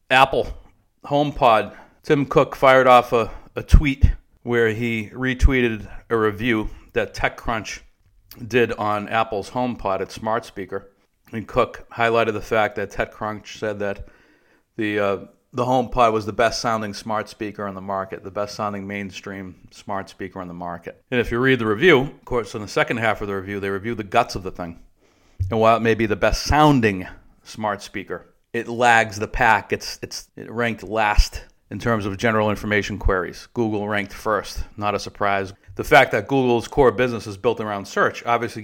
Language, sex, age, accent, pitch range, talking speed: English, male, 50-69, American, 100-115 Hz, 180 wpm